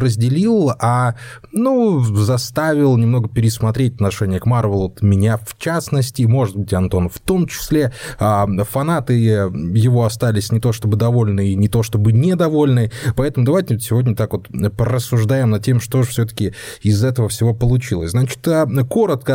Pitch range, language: 105-135 Hz, Russian